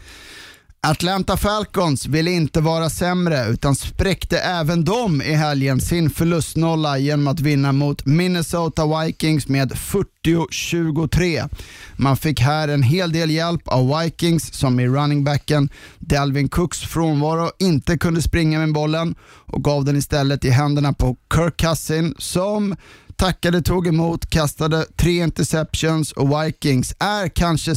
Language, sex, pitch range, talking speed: Swedish, male, 135-165 Hz, 135 wpm